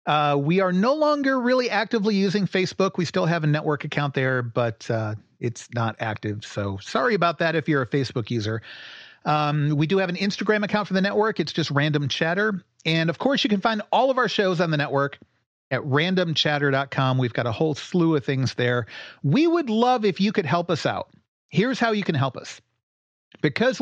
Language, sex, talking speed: English, male, 210 wpm